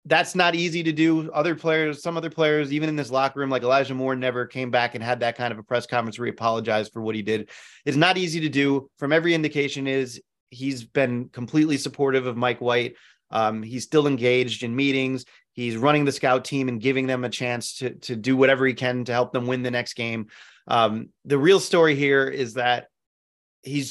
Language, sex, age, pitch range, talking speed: English, male, 30-49, 125-145 Hz, 225 wpm